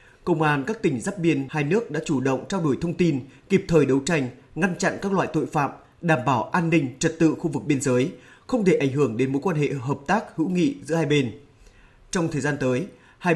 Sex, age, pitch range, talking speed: male, 20-39, 135-170 Hz, 245 wpm